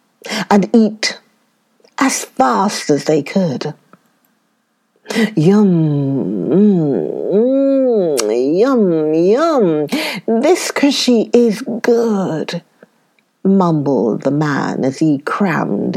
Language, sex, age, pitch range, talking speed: English, female, 50-69, 170-245 Hz, 85 wpm